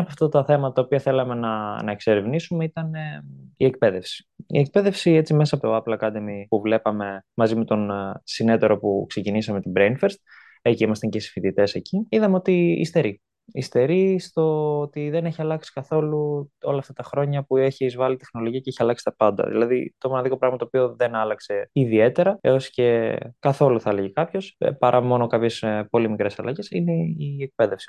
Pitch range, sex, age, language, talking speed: 110-150 Hz, male, 20-39, Greek, 185 wpm